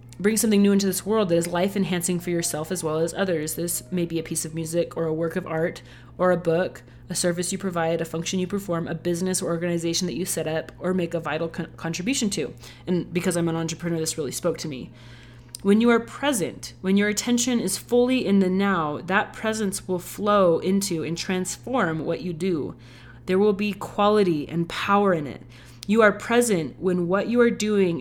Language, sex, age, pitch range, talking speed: English, female, 30-49, 165-195 Hz, 215 wpm